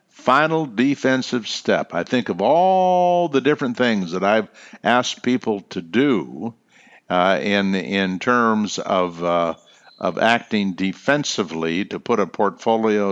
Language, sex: English, male